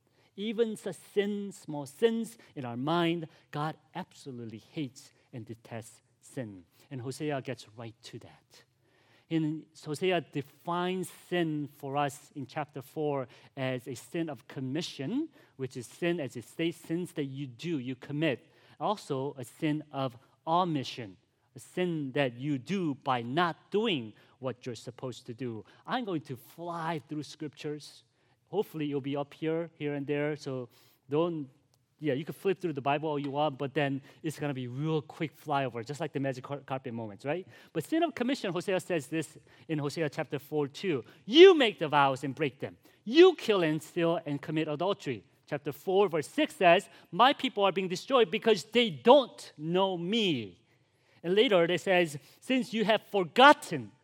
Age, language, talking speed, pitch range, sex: 40-59, English, 170 wpm, 130-175 Hz, male